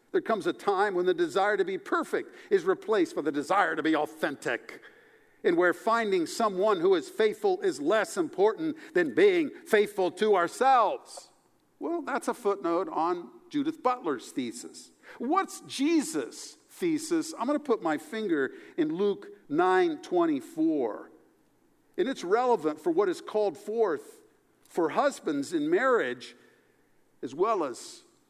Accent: American